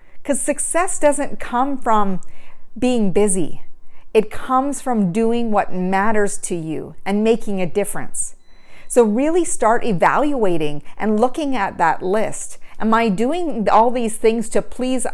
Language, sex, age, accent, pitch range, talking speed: English, female, 40-59, American, 195-260 Hz, 145 wpm